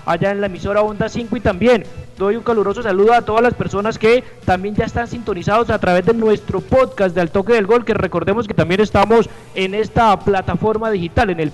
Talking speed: 220 wpm